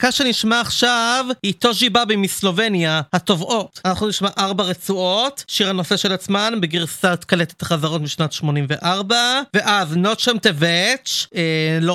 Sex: male